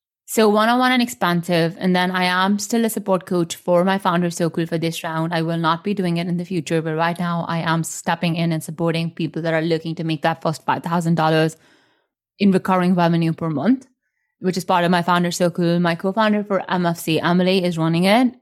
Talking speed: 230 wpm